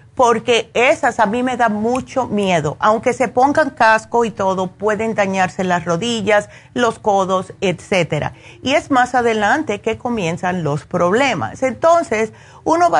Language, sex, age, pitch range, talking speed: Spanish, female, 50-69, 195-245 Hz, 150 wpm